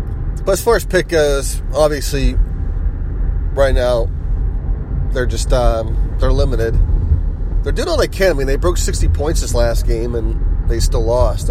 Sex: male